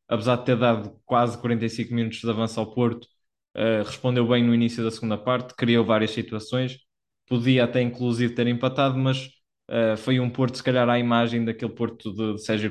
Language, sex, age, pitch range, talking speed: Portuguese, male, 20-39, 110-125 Hz, 195 wpm